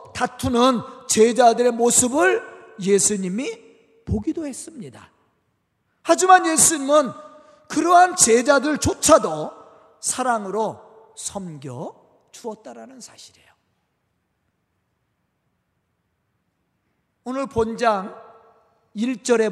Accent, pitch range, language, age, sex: native, 215-290 Hz, Korean, 40-59, male